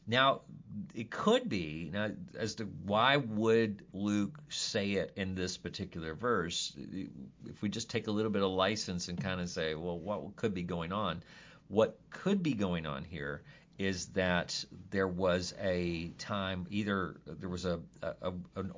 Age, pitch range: 40-59, 85-110 Hz